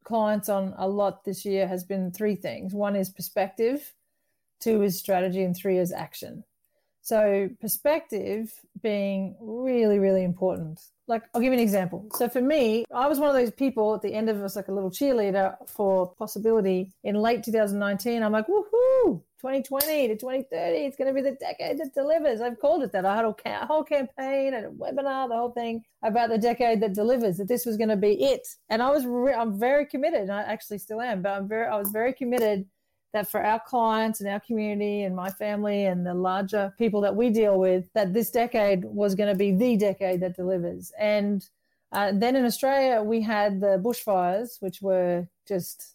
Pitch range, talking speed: 195-235 Hz, 205 wpm